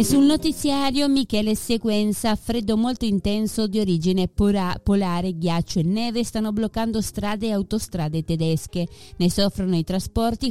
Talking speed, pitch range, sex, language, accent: 145 wpm, 160-215 Hz, female, Spanish, Italian